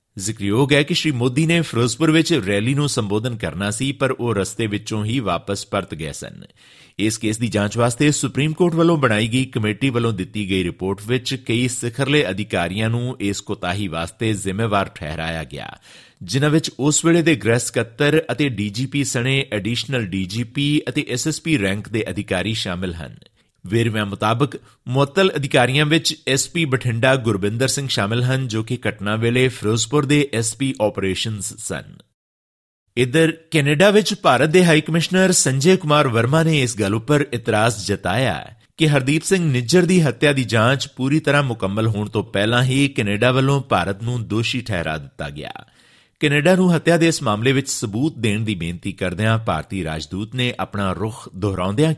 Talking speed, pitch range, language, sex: 115 wpm, 105-145 Hz, Punjabi, male